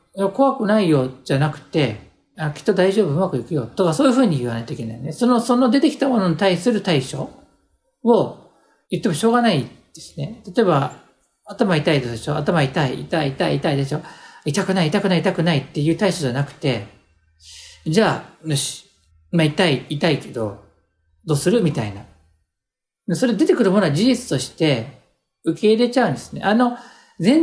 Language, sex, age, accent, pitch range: Japanese, male, 50-69, native, 145-225 Hz